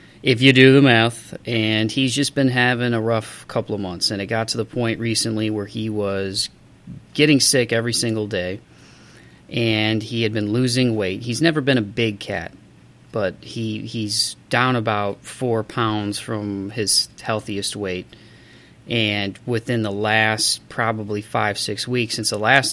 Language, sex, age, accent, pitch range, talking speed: English, male, 30-49, American, 105-120 Hz, 165 wpm